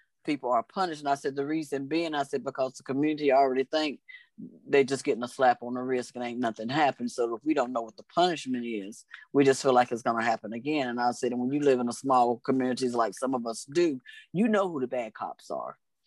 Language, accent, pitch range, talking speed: English, American, 125-155 Hz, 260 wpm